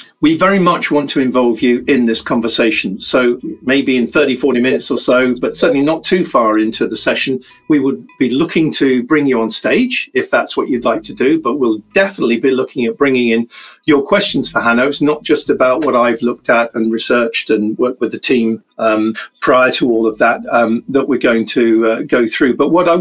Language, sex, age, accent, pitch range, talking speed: English, male, 50-69, British, 125-190 Hz, 225 wpm